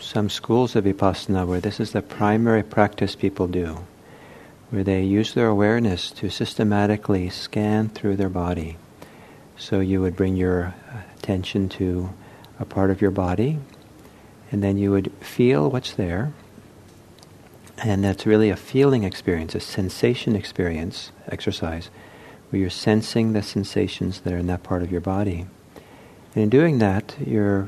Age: 50-69